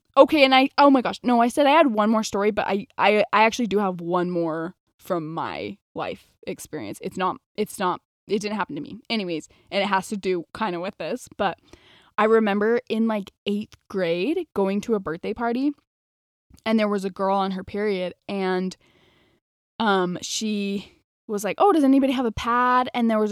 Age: 10-29